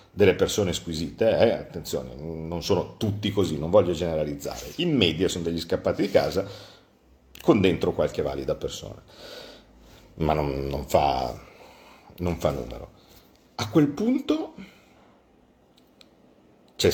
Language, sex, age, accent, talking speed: Italian, male, 50-69, native, 125 wpm